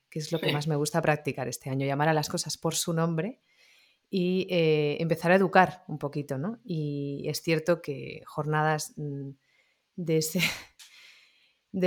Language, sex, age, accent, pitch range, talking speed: Spanish, female, 30-49, Spanish, 155-185 Hz, 160 wpm